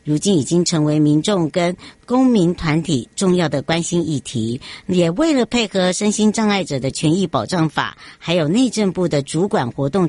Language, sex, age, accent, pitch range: Chinese, male, 60-79, American, 155-210 Hz